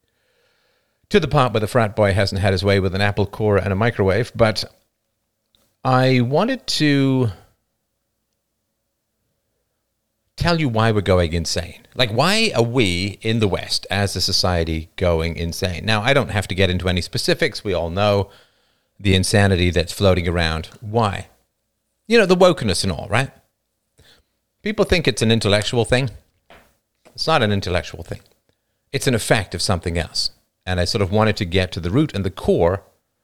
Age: 50-69